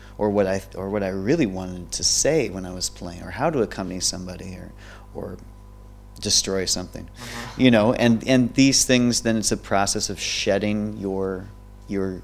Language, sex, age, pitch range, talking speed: English, male, 30-49, 95-110 Hz, 180 wpm